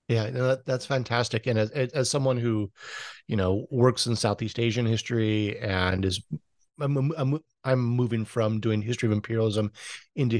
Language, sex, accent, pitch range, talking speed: English, male, American, 110-130 Hz, 155 wpm